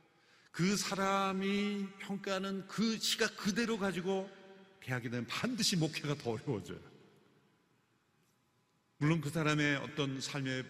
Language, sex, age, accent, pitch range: Korean, male, 50-69, native, 150-200 Hz